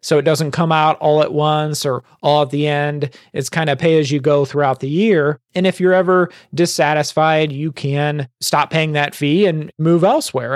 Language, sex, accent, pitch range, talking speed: English, male, American, 145-170 Hz, 195 wpm